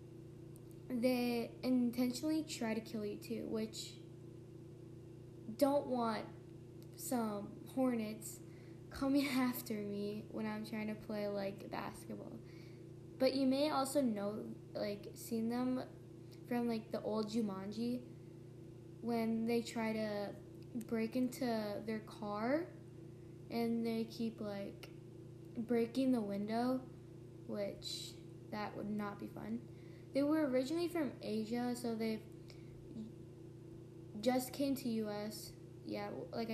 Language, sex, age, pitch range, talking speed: English, female, 10-29, 165-250 Hz, 115 wpm